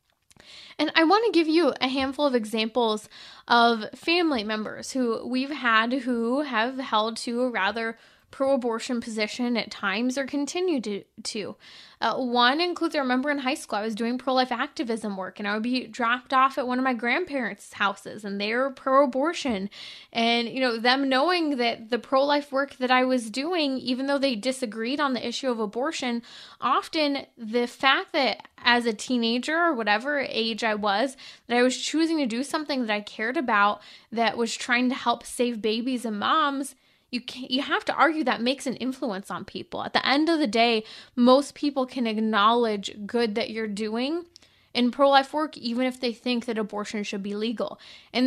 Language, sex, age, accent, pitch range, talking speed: English, female, 10-29, American, 225-275 Hz, 190 wpm